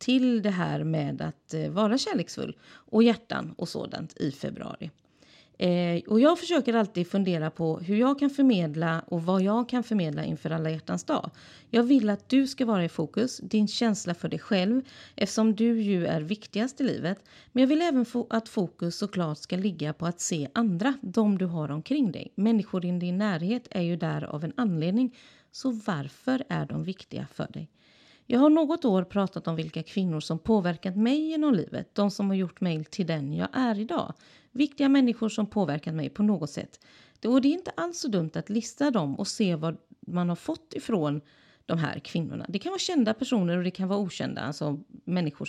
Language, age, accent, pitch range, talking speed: English, 30-49, Swedish, 165-235 Hz, 200 wpm